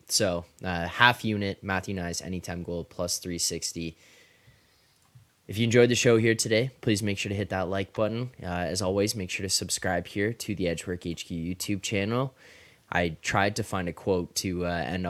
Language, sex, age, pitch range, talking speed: English, male, 10-29, 90-105 Hz, 190 wpm